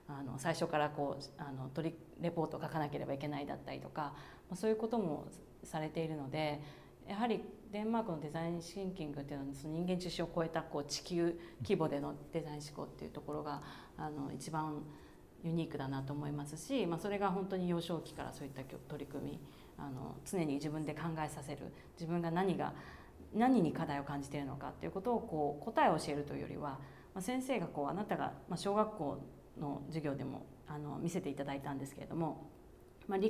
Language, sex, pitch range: Japanese, female, 145-180 Hz